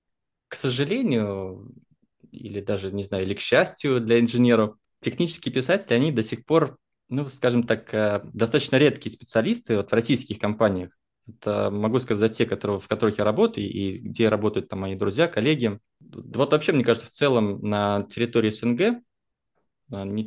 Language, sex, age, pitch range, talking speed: Russian, male, 20-39, 105-130 Hz, 160 wpm